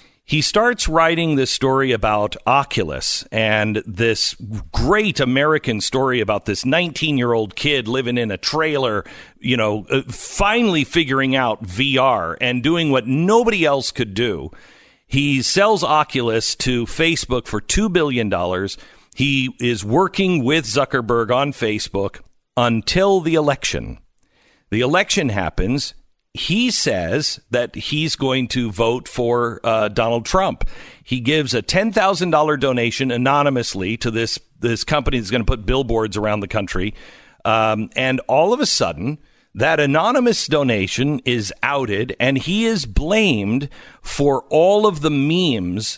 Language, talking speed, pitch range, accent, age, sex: English, 140 wpm, 115-155 Hz, American, 50-69, male